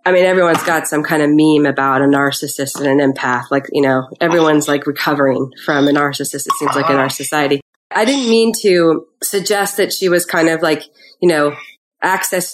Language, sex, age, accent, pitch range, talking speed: English, female, 30-49, American, 155-190 Hz, 205 wpm